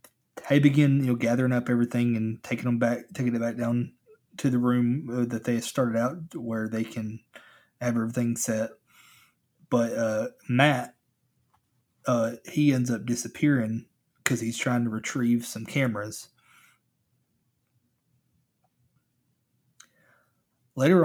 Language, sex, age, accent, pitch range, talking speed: English, male, 20-39, American, 115-130 Hz, 125 wpm